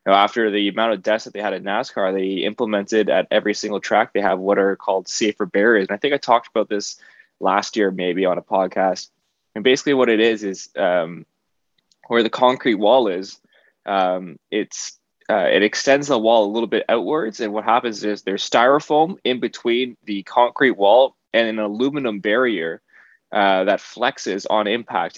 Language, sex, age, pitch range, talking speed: English, male, 20-39, 95-115 Hz, 185 wpm